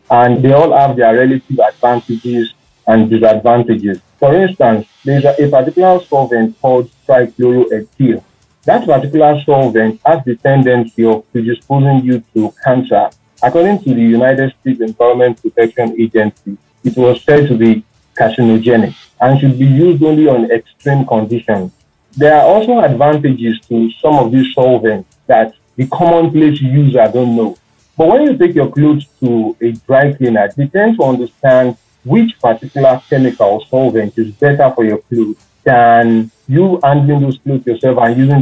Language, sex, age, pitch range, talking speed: English, male, 40-59, 115-145 Hz, 155 wpm